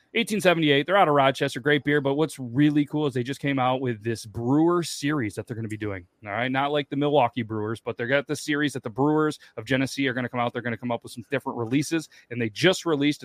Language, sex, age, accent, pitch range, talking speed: English, male, 30-49, American, 115-145 Hz, 275 wpm